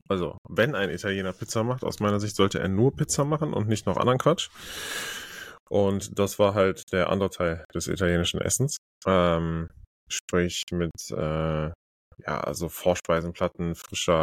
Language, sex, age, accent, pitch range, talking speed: German, male, 20-39, German, 85-105 Hz, 155 wpm